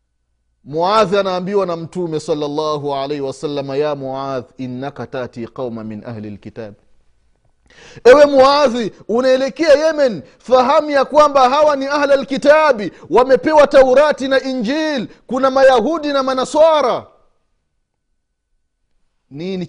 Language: Swahili